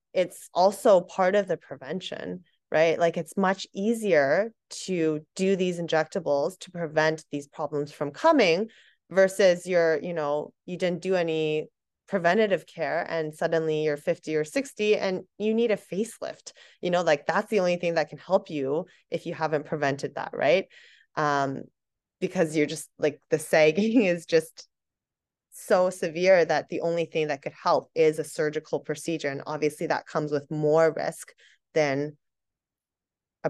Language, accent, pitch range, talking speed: English, American, 155-195 Hz, 160 wpm